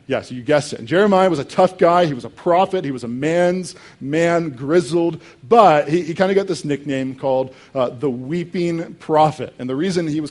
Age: 40-59